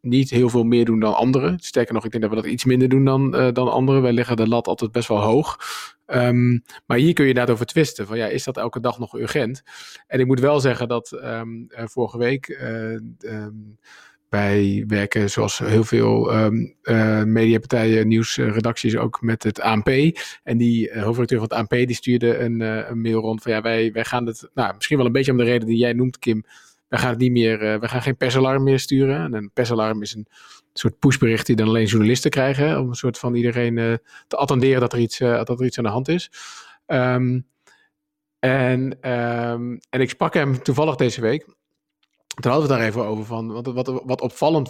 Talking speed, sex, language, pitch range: 215 wpm, male, Dutch, 115-130 Hz